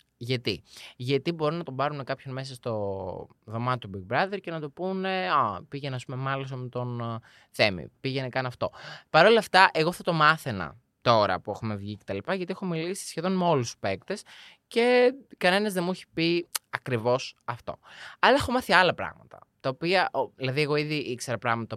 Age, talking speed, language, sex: 20-39, 175 wpm, Greek, male